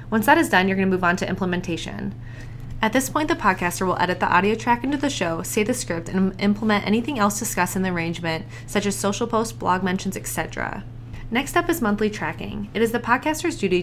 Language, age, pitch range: English, 20-39, 170-220 Hz